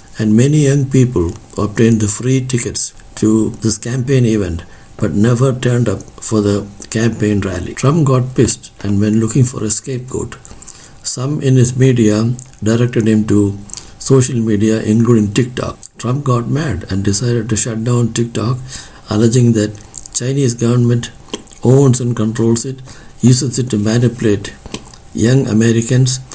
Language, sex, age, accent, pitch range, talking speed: English, male, 60-79, Indian, 105-130 Hz, 145 wpm